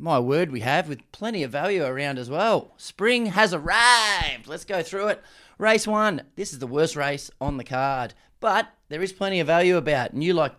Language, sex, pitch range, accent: English, male, 135-175 Hz, Australian